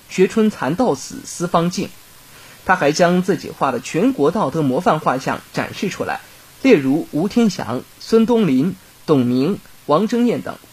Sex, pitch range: male, 140-205 Hz